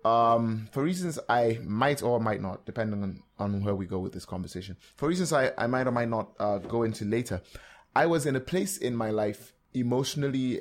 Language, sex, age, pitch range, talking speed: English, male, 20-39, 100-140 Hz, 215 wpm